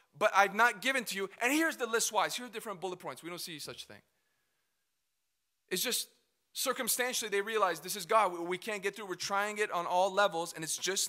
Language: English